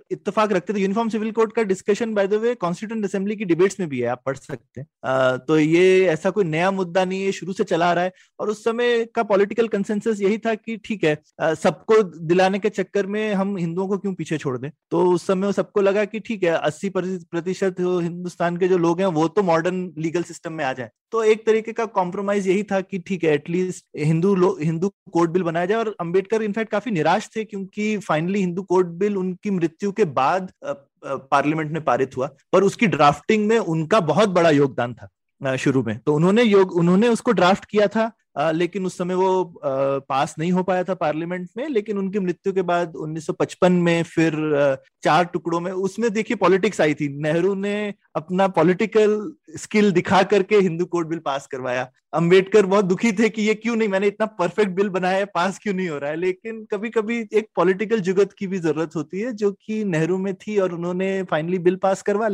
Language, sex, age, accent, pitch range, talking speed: Hindi, male, 20-39, native, 165-210 Hz, 205 wpm